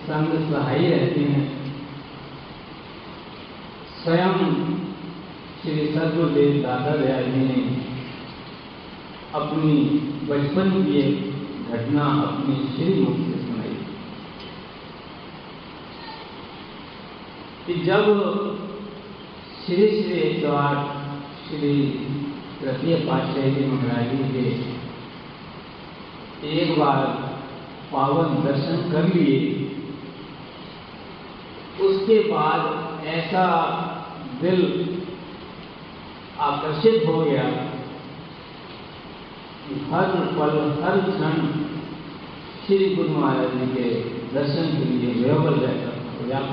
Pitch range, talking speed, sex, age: 140-165 Hz, 70 wpm, male, 50-69